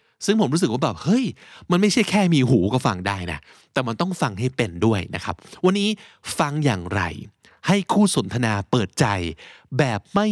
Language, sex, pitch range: Thai, male, 110-175 Hz